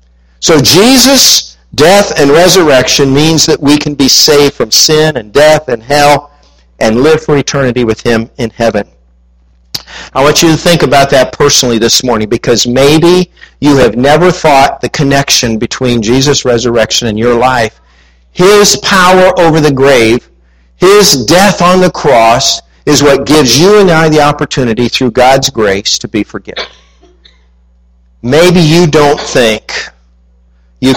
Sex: male